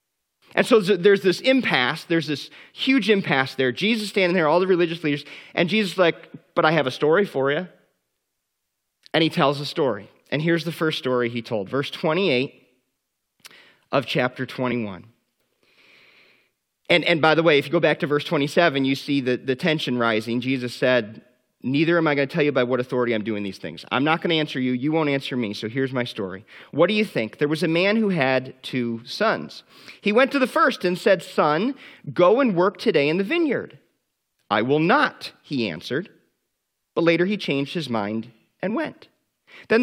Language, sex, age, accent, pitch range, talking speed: English, male, 30-49, American, 130-195 Hz, 200 wpm